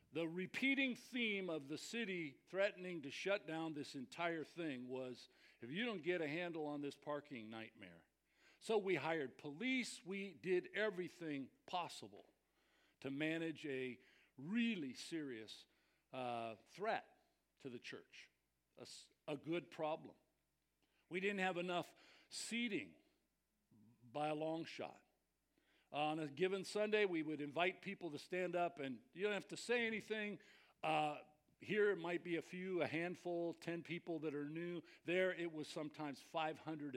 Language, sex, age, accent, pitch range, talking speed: English, male, 50-69, American, 145-195 Hz, 150 wpm